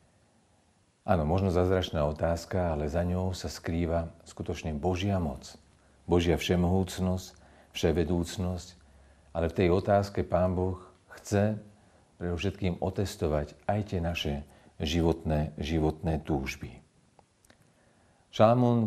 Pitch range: 85-100 Hz